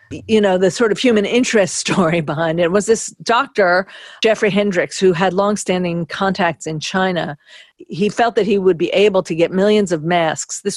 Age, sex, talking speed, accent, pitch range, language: 50-69, female, 190 wpm, American, 165-210 Hz, English